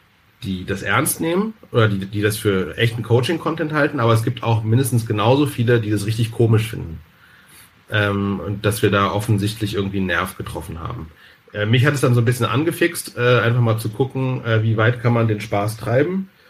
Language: German